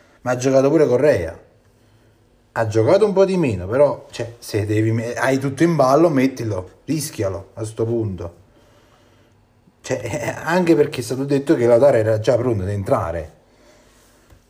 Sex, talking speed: male, 160 wpm